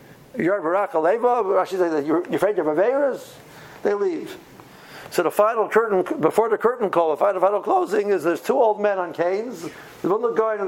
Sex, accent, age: male, American, 60-79